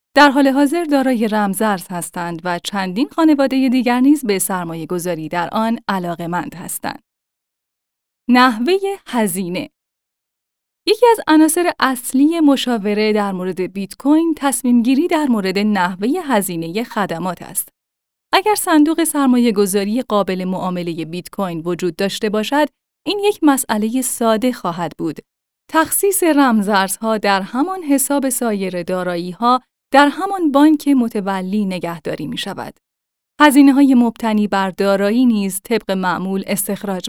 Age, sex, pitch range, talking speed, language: 10-29, female, 190-275 Hz, 120 wpm, Persian